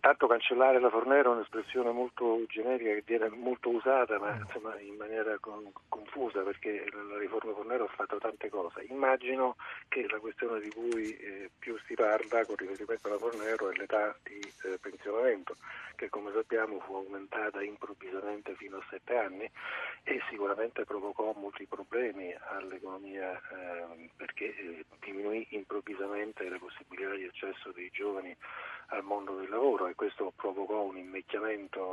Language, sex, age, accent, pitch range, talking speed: Italian, male, 40-59, native, 100-150 Hz, 155 wpm